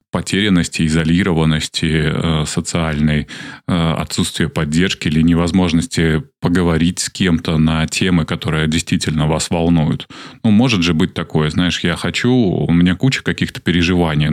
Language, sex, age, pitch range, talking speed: Russian, male, 20-39, 80-95 Hz, 120 wpm